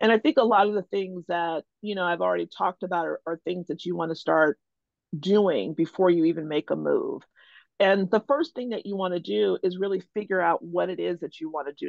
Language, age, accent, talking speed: English, 40-59, American, 255 wpm